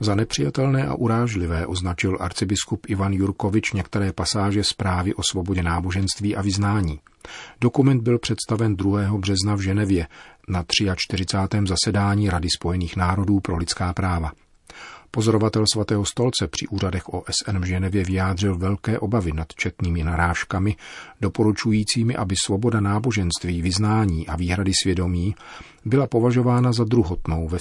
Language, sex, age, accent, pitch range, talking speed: Czech, male, 40-59, native, 90-110 Hz, 130 wpm